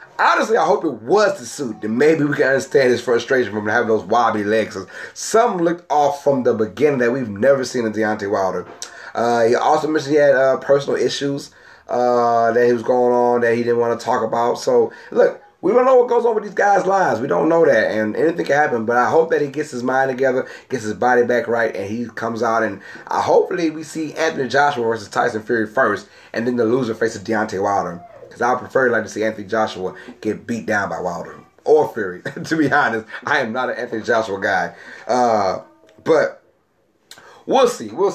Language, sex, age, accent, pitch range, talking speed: English, male, 30-49, American, 115-160 Hz, 215 wpm